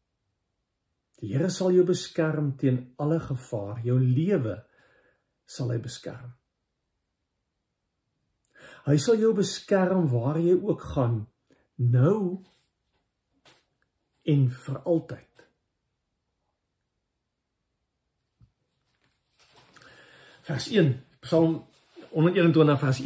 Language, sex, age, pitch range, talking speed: English, male, 50-69, 125-175 Hz, 70 wpm